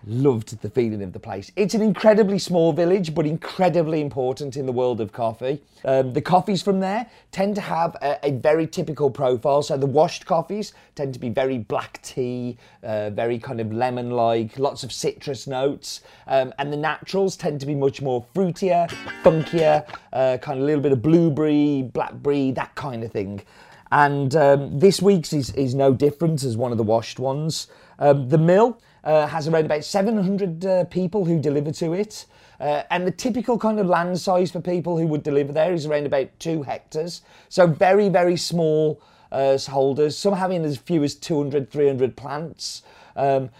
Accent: British